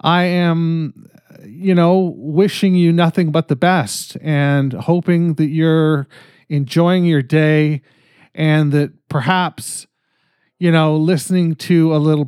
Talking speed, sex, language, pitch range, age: 125 wpm, male, English, 130-165 Hz, 40-59